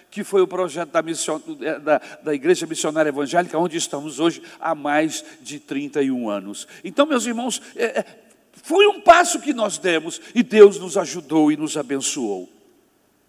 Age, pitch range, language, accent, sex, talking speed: 60-79, 185-305 Hz, Portuguese, Brazilian, male, 150 wpm